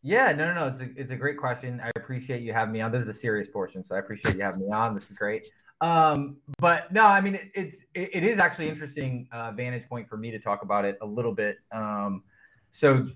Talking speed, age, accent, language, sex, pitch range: 265 wpm, 20-39, American, English, male, 110-135 Hz